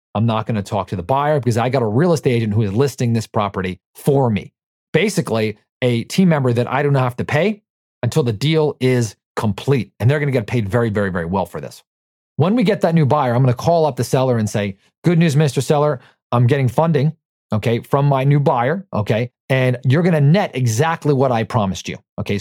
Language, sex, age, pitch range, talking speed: English, male, 40-59, 120-155 Hz, 225 wpm